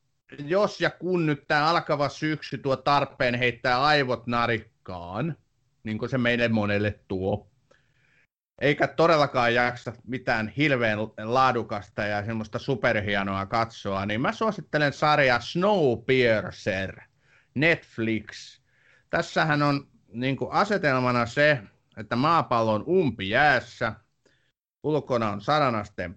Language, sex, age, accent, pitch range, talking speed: Finnish, male, 30-49, native, 110-140 Hz, 110 wpm